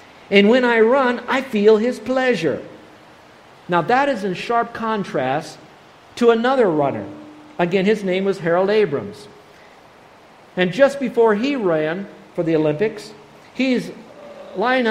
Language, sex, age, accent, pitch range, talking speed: English, male, 50-69, American, 165-230 Hz, 135 wpm